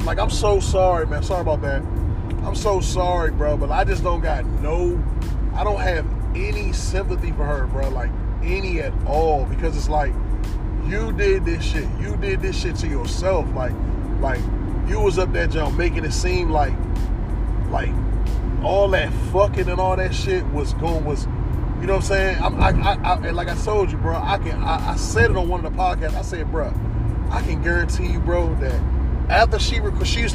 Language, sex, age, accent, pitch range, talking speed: English, male, 20-39, American, 85-105 Hz, 210 wpm